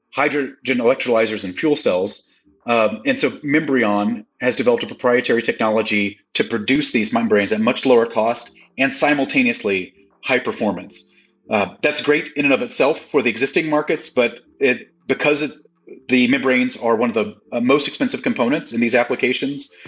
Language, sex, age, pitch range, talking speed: English, male, 30-49, 100-140 Hz, 155 wpm